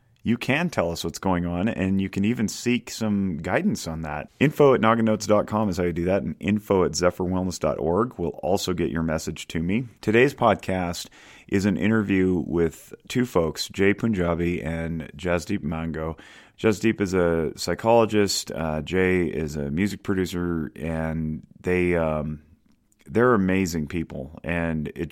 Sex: male